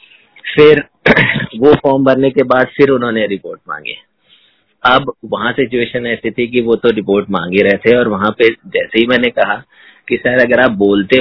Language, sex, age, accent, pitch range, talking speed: Hindi, male, 30-49, native, 110-135 Hz, 185 wpm